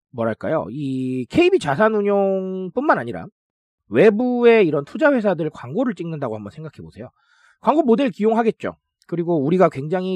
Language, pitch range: Korean, 170-260 Hz